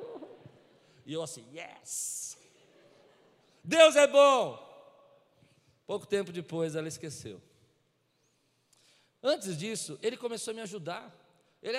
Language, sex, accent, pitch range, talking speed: Portuguese, male, Brazilian, 135-205 Hz, 100 wpm